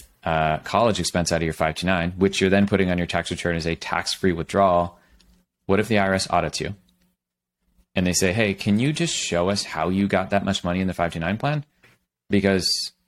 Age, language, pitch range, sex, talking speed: 30-49, English, 80-100 Hz, male, 215 wpm